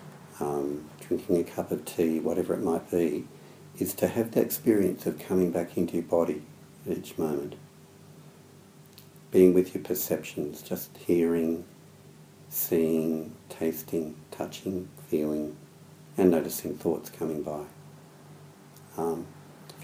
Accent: Australian